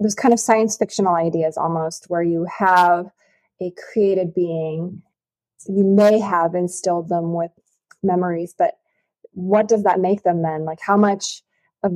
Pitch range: 175-210 Hz